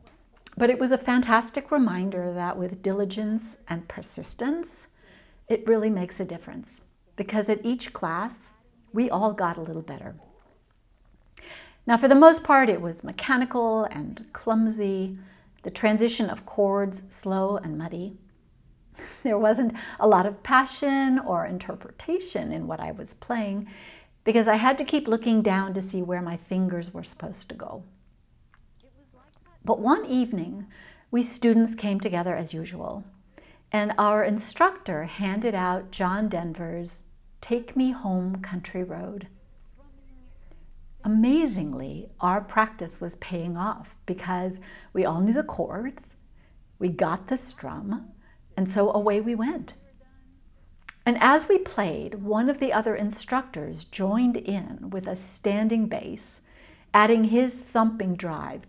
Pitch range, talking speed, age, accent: 185-235 Hz, 135 wpm, 60-79, American